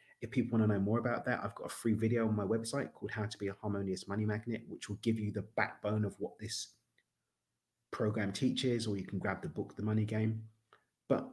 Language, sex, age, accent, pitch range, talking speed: English, male, 30-49, British, 100-125 Hz, 235 wpm